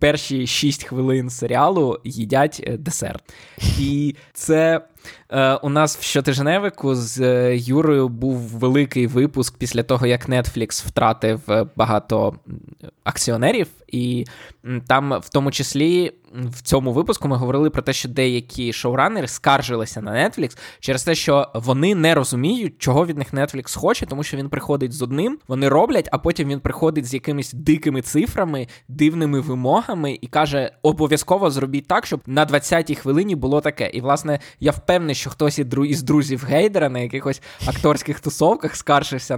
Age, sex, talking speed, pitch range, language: 20-39, male, 150 wpm, 125-150 Hz, Ukrainian